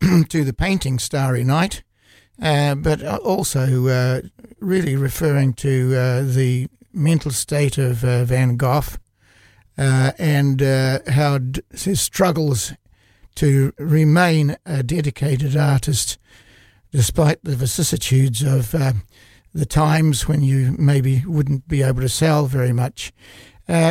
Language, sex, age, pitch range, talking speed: English, male, 60-79, 125-155 Hz, 125 wpm